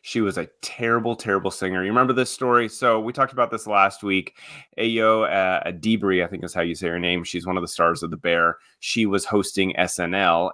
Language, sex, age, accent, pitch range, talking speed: English, male, 30-49, American, 90-110 Hz, 220 wpm